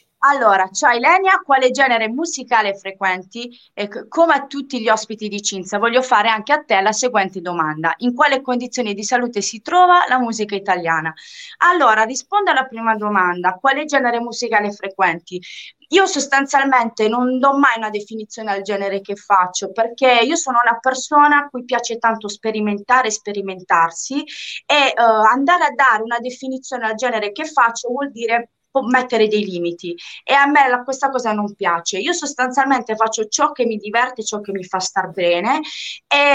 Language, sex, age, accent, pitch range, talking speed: Italian, female, 30-49, native, 205-265 Hz, 170 wpm